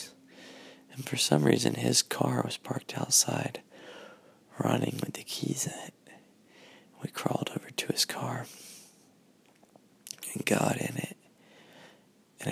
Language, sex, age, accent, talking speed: English, male, 20-39, American, 125 wpm